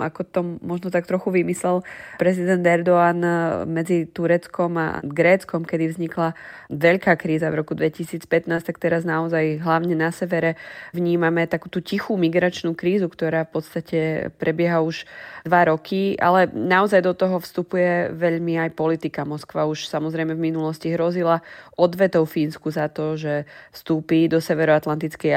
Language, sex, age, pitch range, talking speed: Slovak, female, 20-39, 160-175 Hz, 140 wpm